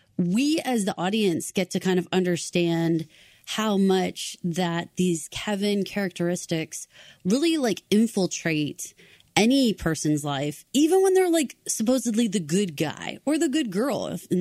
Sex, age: female, 20-39